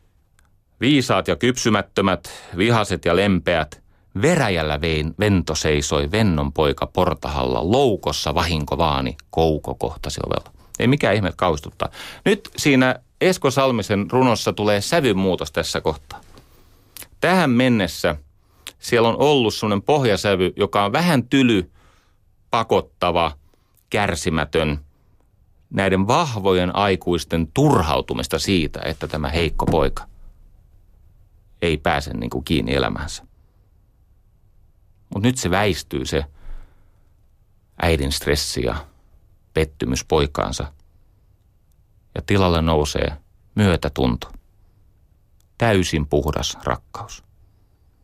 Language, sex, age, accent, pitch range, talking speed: Finnish, male, 30-49, native, 80-100 Hz, 90 wpm